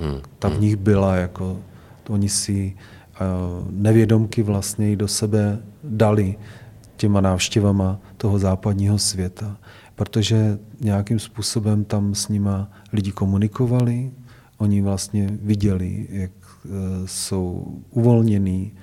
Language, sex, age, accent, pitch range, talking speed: Czech, male, 40-59, native, 95-115 Hz, 100 wpm